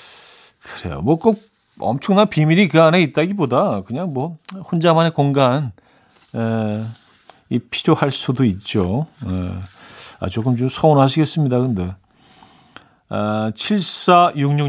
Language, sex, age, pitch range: Korean, male, 40-59, 120-160 Hz